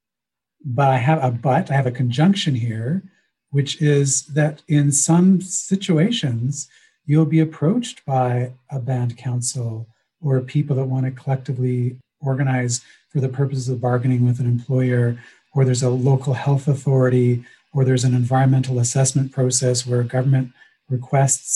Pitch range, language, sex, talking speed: 125-150 Hz, French, male, 150 wpm